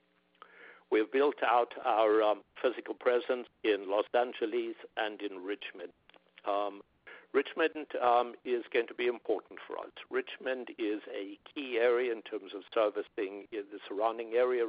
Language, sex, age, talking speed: English, male, 60-79, 145 wpm